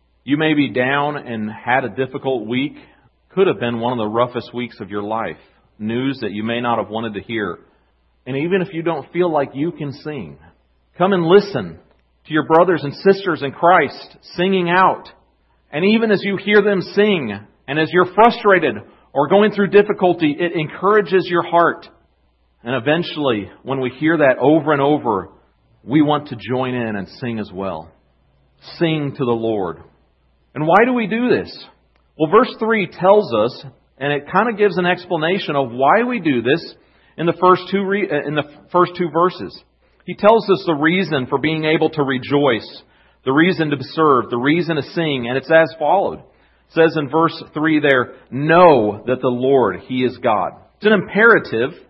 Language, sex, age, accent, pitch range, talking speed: English, male, 40-59, American, 125-185 Hz, 185 wpm